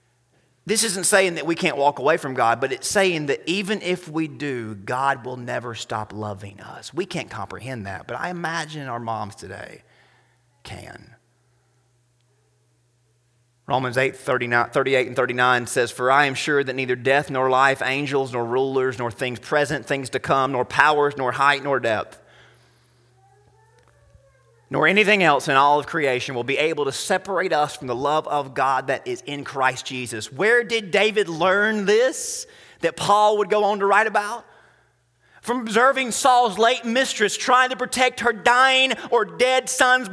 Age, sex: 30-49, male